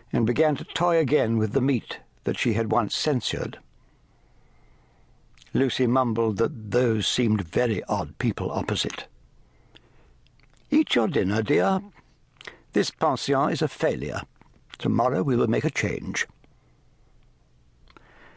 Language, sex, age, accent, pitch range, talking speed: English, male, 60-79, British, 115-155 Hz, 120 wpm